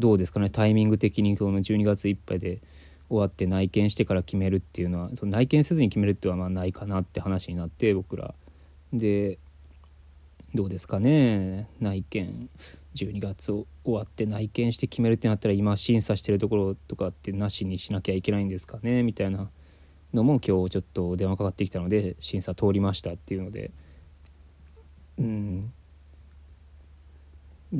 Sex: male